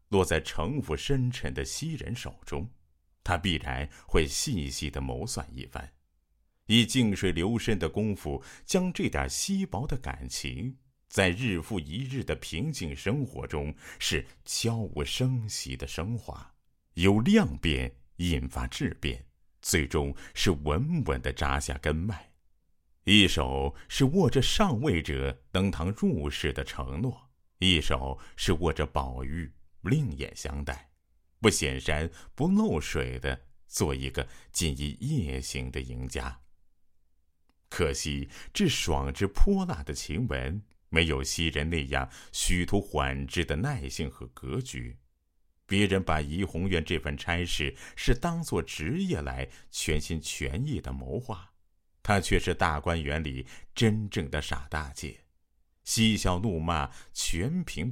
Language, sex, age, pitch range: Chinese, male, 50-69, 70-95 Hz